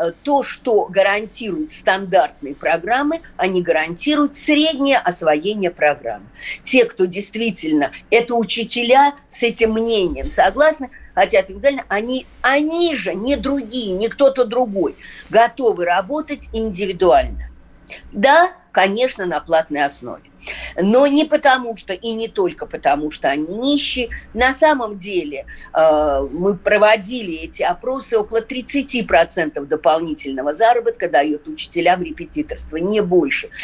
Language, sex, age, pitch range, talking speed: Russian, female, 50-69, 175-265 Hz, 110 wpm